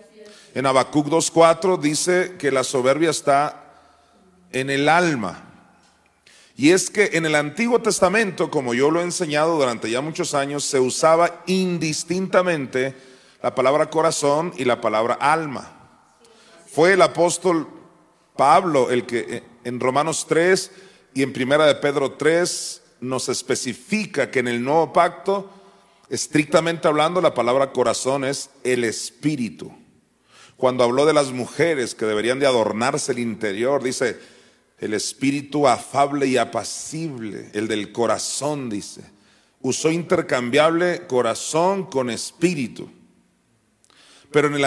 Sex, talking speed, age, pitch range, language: male, 130 wpm, 40-59, 125-170 Hz, Spanish